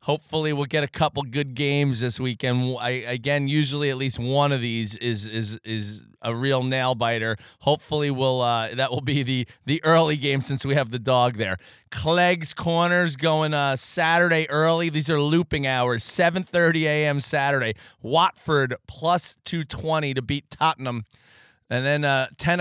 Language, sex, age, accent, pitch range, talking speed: English, male, 30-49, American, 125-155 Hz, 165 wpm